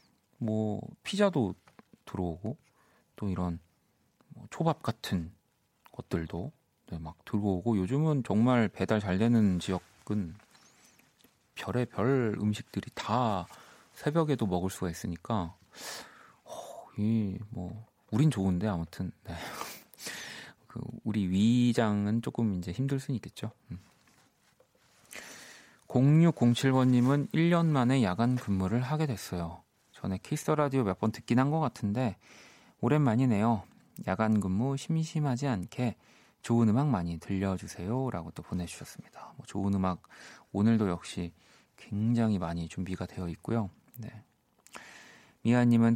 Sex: male